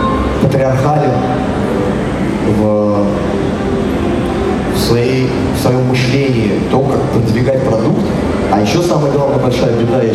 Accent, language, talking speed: native, Russian, 105 wpm